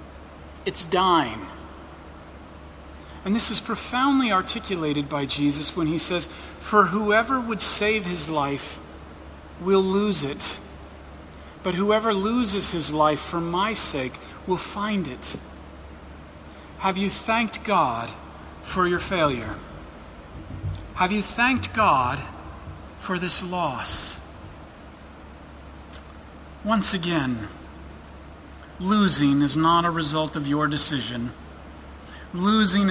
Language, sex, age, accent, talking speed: English, male, 40-59, American, 105 wpm